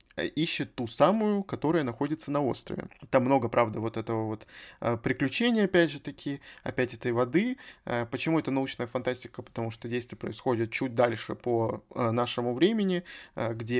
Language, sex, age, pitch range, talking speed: Russian, male, 20-39, 120-145 Hz, 150 wpm